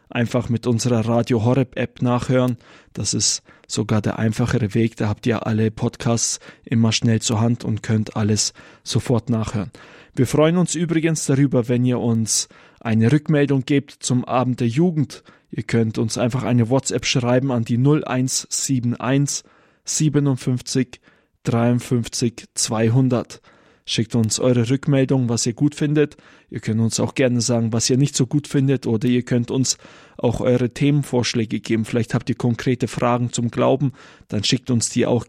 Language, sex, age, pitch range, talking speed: German, male, 20-39, 115-130 Hz, 160 wpm